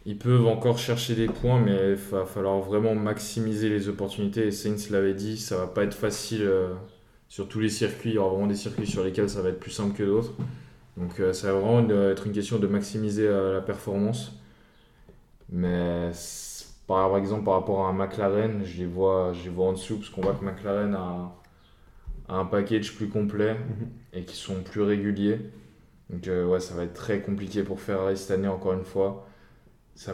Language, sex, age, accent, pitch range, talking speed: French, male, 20-39, French, 95-105 Hz, 195 wpm